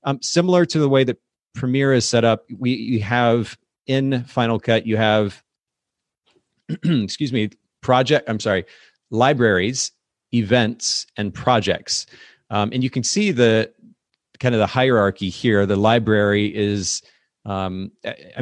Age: 30-49